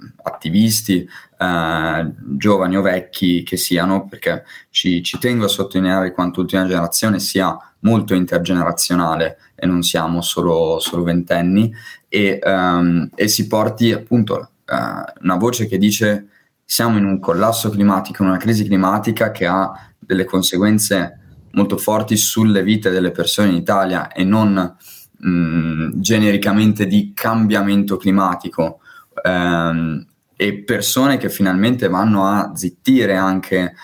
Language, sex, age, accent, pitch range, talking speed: Italian, male, 20-39, native, 90-105 Hz, 130 wpm